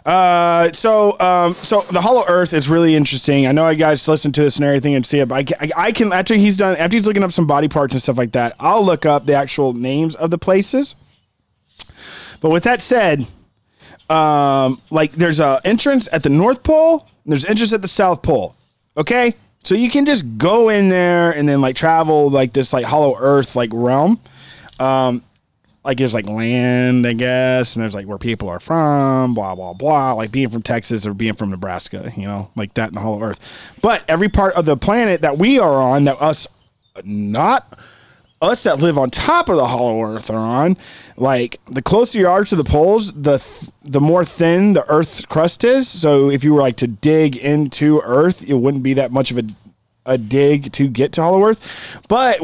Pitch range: 130-180 Hz